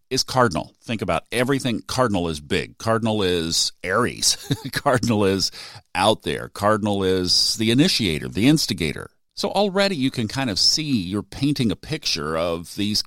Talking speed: 155 wpm